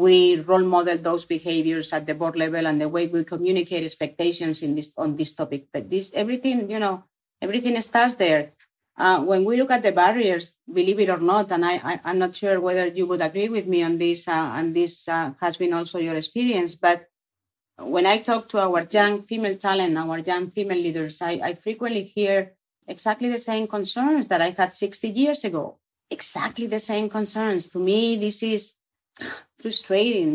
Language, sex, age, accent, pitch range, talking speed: German, female, 40-59, Spanish, 175-220 Hz, 195 wpm